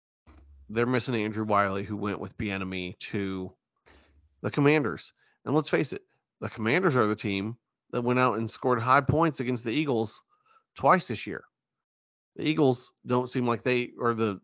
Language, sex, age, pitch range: English, male, 30-49, 105-125 Hz